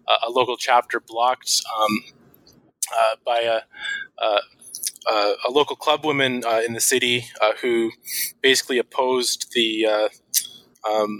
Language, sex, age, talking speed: English, male, 20-39, 125 wpm